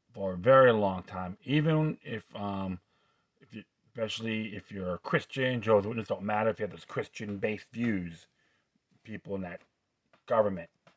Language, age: English, 30-49